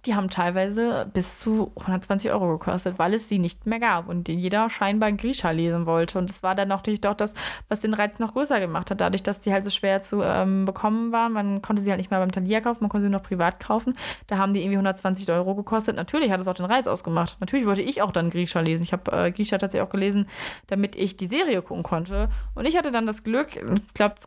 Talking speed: 255 wpm